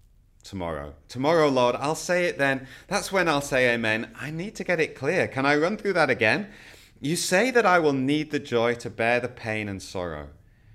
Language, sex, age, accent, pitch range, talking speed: English, male, 30-49, British, 85-115 Hz, 210 wpm